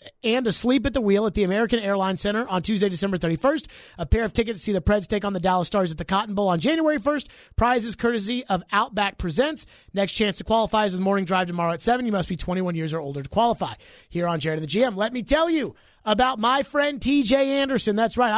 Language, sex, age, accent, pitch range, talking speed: English, male, 30-49, American, 195-265 Hz, 250 wpm